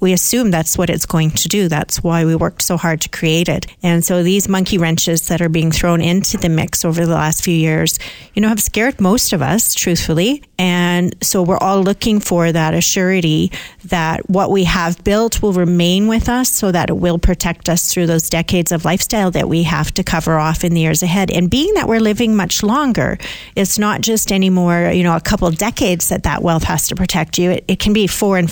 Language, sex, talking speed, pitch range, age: English, female, 230 wpm, 170-195 Hz, 40-59